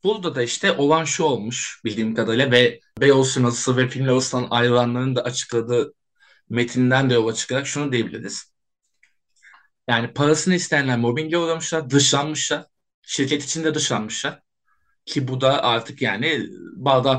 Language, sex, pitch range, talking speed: Turkish, male, 130-170 Hz, 125 wpm